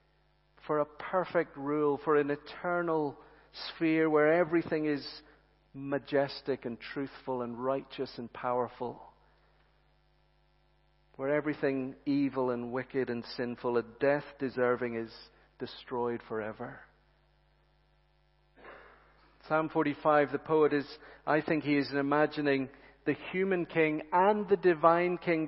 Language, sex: English, male